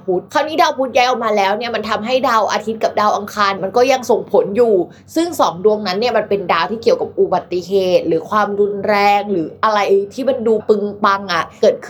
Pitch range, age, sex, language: 195-255 Hz, 20-39, female, Thai